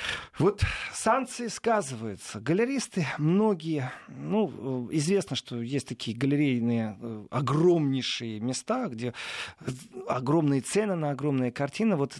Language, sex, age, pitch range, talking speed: Russian, male, 40-59, 125-170 Hz, 100 wpm